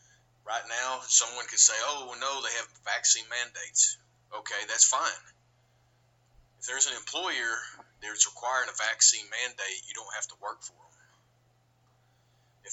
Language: English